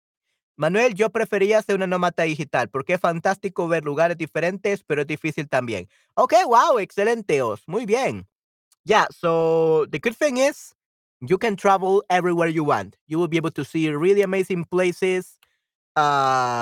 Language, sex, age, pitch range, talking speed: Spanish, male, 30-49, 140-195 Hz, 165 wpm